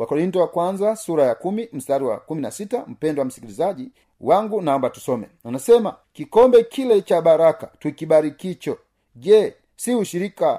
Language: Swahili